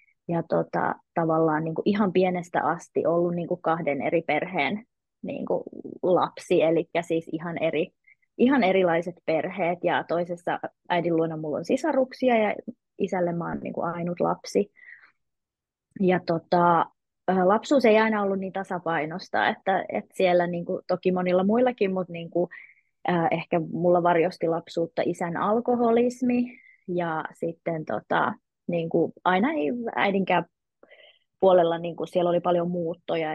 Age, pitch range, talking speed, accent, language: 20-39, 170-210 Hz, 130 wpm, native, Finnish